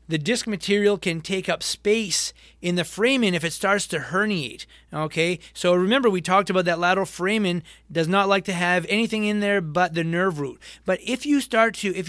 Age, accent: 30-49, American